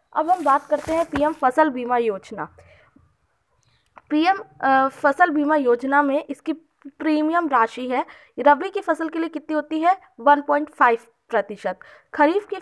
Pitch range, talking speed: 245-320 Hz, 150 wpm